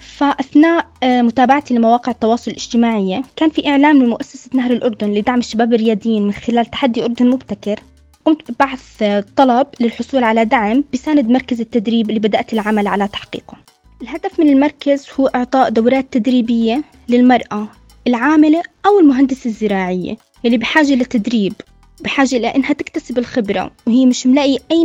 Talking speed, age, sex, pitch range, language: 135 wpm, 20-39, female, 225-270 Hz, Arabic